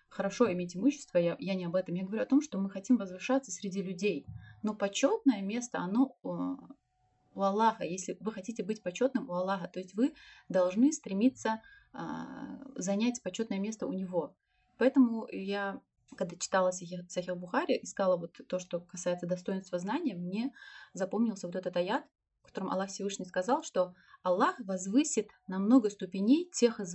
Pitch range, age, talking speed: 180-240 Hz, 20-39, 165 wpm